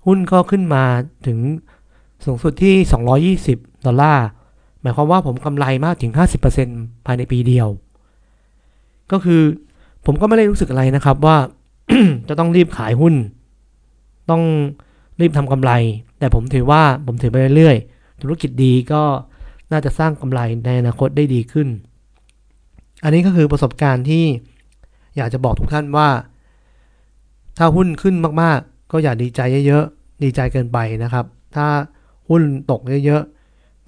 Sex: male